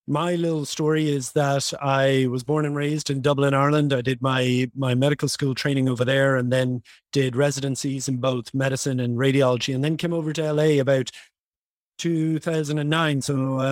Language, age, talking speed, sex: English, 30-49, 170 wpm, male